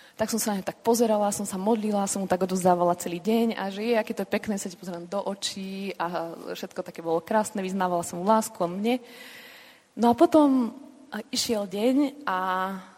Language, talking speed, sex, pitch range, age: Slovak, 205 wpm, female, 185-215 Hz, 20-39